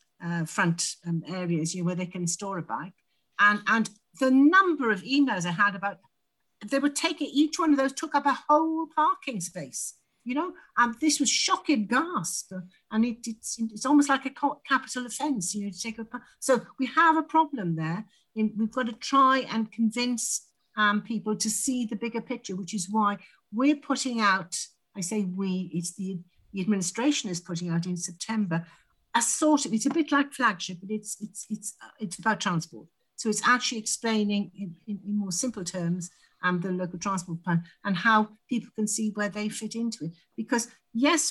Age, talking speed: 60-79, 200 wpm